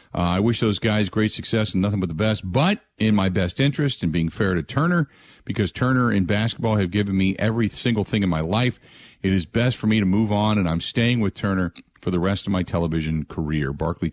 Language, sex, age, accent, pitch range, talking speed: English, male, 50-69, American, 90-115 Hz, 240 wpm